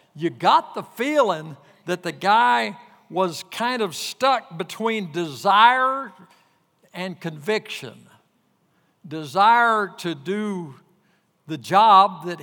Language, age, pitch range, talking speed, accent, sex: English, 60-79, 135-200 Hz, 100 wpm, American, male